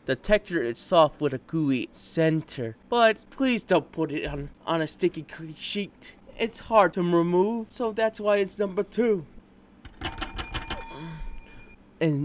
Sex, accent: male, American